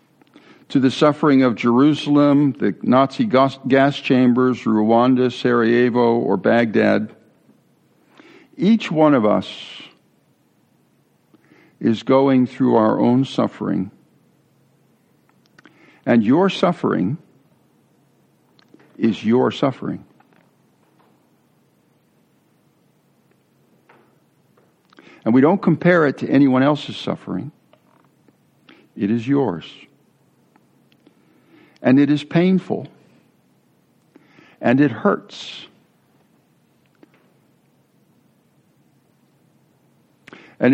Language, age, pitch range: English, 60-79, 115-150 Hz